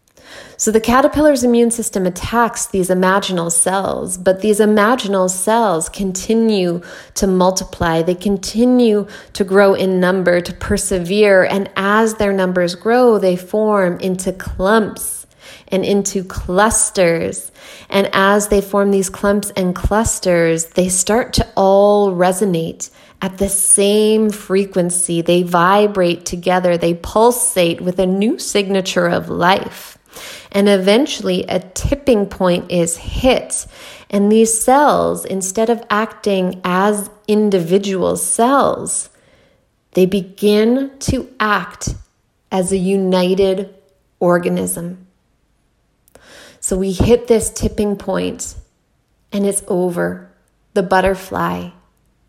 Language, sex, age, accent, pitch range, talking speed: English, female, 20-39, American, 180-210 Hz, 115 wpm